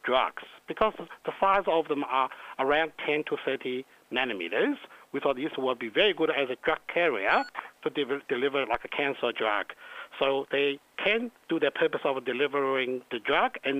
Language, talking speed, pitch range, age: English, 175 wpm, 140-200 Hz, 60-79